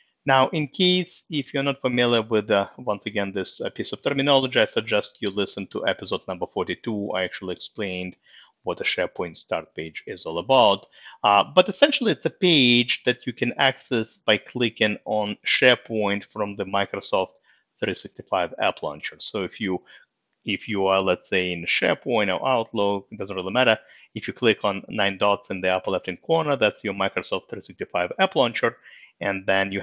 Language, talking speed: English, 180 wpm